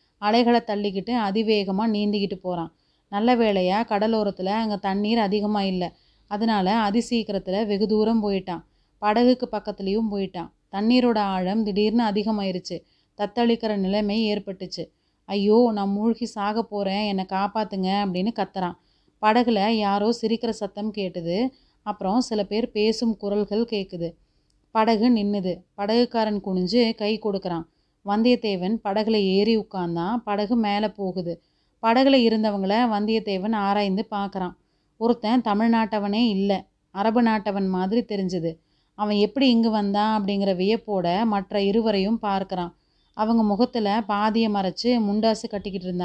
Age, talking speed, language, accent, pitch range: 30-49, 110 wpm, Tamil, native, 195-225 Hz